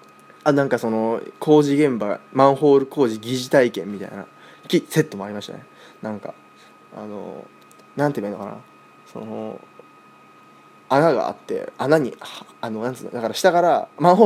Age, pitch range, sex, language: 20-39, 110-175 Hz, male, Japanese